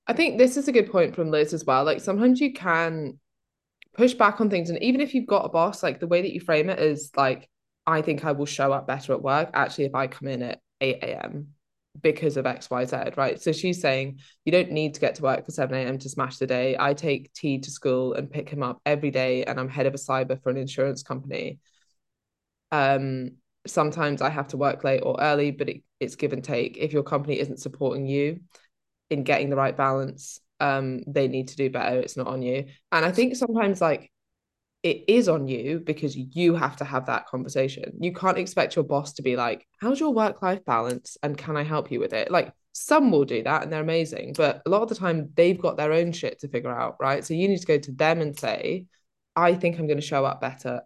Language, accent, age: English, British, 10-29